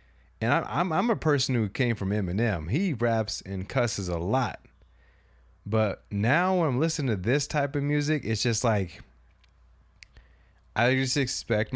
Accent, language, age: American, English, 30-49